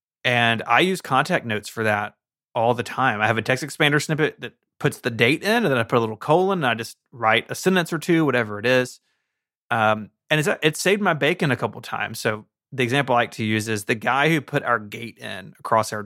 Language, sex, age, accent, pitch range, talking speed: English, male, 30-49, American, 110-140 Hz, 250 wpm